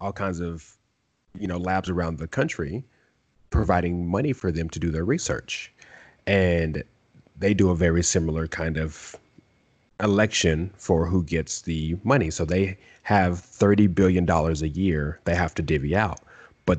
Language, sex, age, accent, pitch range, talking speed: English, male, 30-49, American, 85-100 Hz, 160 wpm